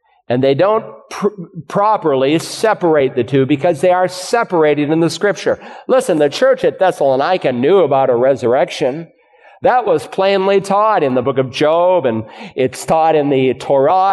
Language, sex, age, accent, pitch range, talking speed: English, male, 50-69, American, 145-205 Hz, 160 wpm